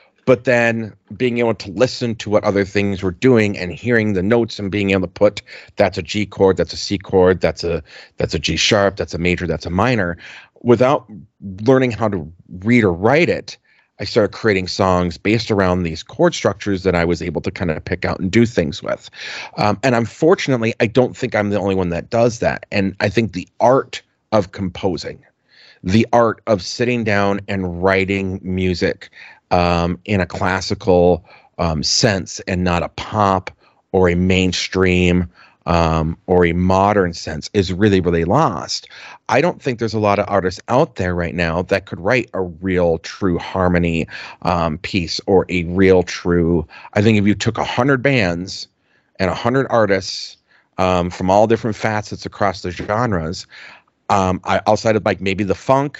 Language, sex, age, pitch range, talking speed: English, male, 30-49, 90-110 Hz, 185 wpm